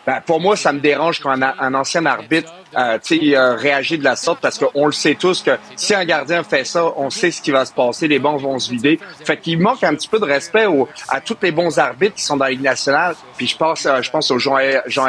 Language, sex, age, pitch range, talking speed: French, male, 40-59, 135-180 Hz, 280 wpm